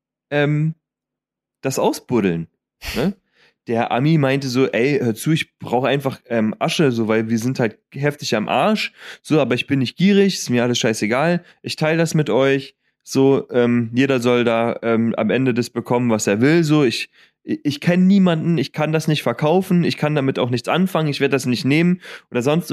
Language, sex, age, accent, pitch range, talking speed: German, male, 30-49, German, 125-175 Hz, 200 wpm